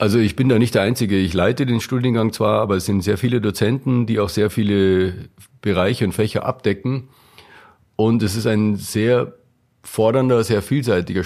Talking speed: 180 wpm